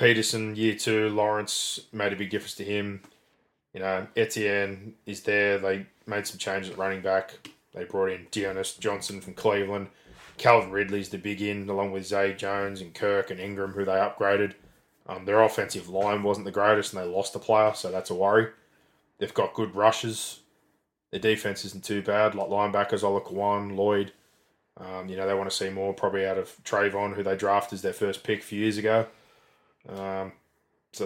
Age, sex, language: 20-39, male, English